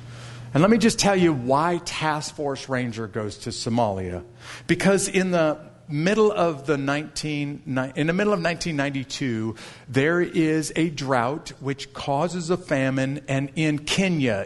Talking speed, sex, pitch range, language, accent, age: 150 wpm, male, 110-145 Hz, English, American, 50-69